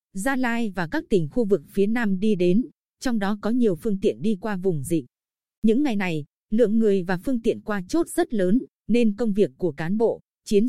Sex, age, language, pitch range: female, 20-39, Vietnamese, 190-245 Hz